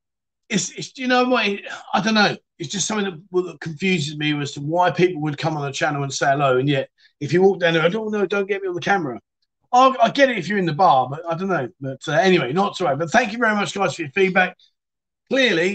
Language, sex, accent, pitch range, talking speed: English, male, British, 150-190 Hz, 270 wpm